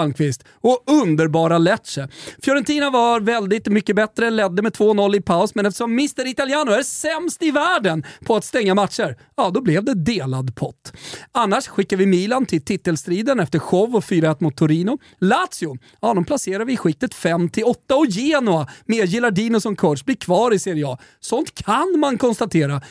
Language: Swedish